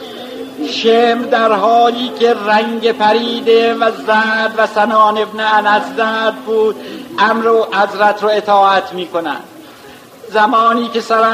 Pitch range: 205-230 Hz